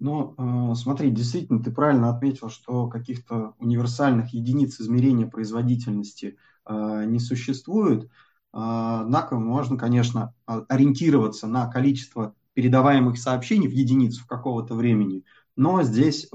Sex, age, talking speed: male, 20-39, 115 wpm